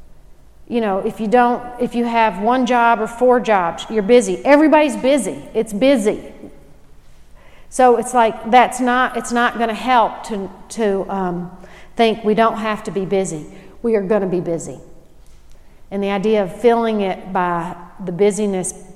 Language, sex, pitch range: English, female, 190-235 Hz